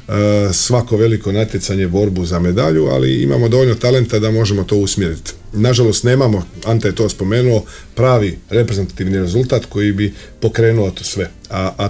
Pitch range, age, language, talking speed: 95-110 Hz, 40-59, Croatian, 155 wpm